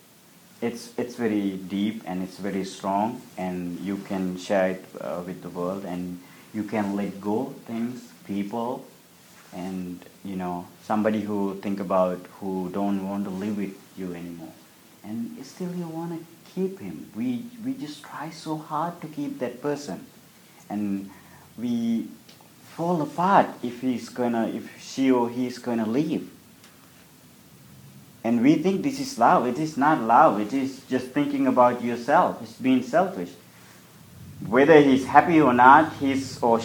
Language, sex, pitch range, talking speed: English, male, 95-135 Hz, 160 wpm